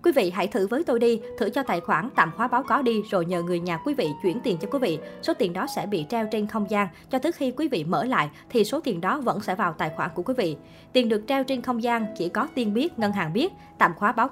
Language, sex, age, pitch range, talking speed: Vietnamese, male, 20-39, 195-250 Hz, 300 wpm